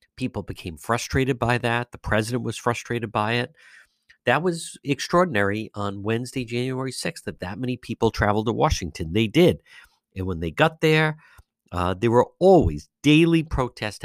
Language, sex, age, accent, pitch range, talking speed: English, male, 50-69, American, 100-135 Hz, 160 wpm